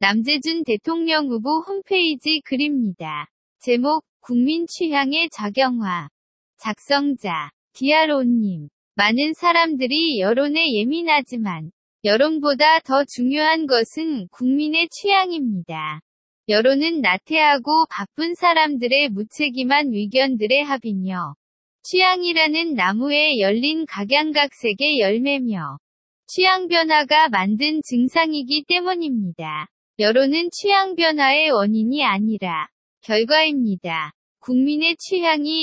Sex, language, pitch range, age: female, Korean, 215-315 Hz, 20-39